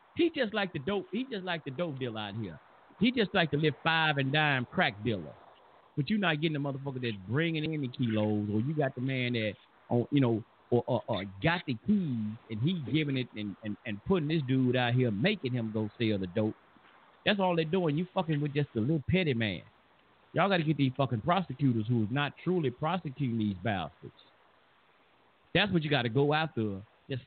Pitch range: 120-180 Hz